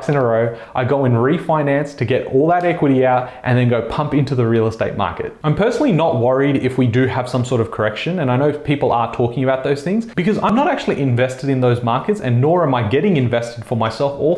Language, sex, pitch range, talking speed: English, male, 125-160 Hz, 255 wpm